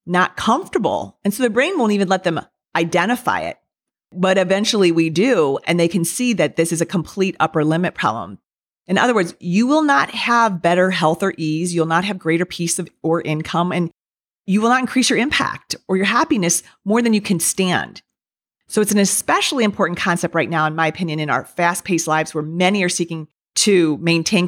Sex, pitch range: female, 160-200 Hz